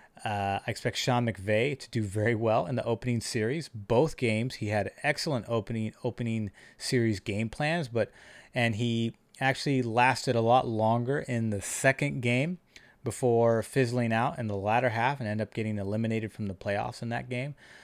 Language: English